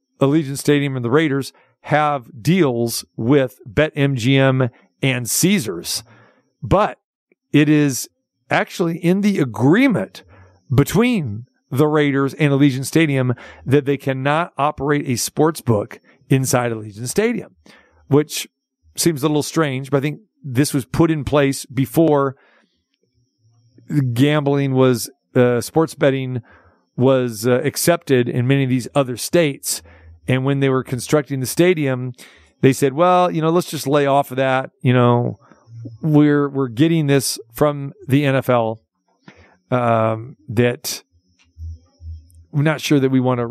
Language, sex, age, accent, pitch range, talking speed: English, male, 50-69, American, 125-145 Hz, 135 wpm